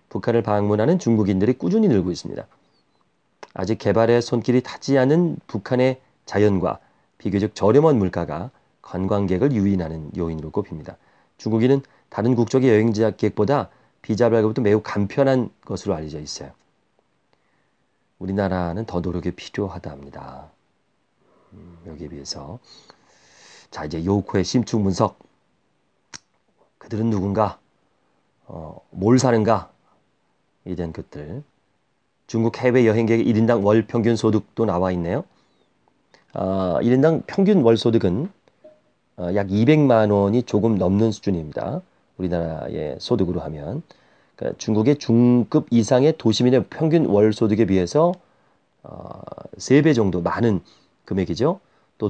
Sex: male